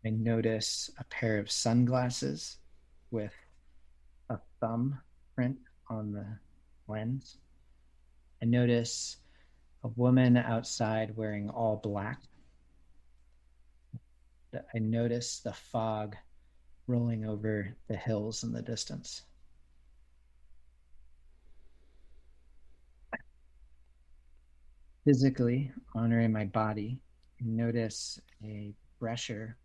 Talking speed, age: 80 wpm, 40-59